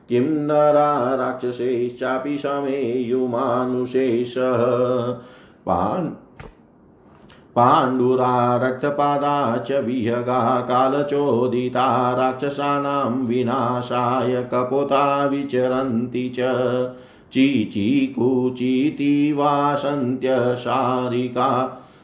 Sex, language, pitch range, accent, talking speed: male, Hindi, 125-140 Hz, native, 35 wpm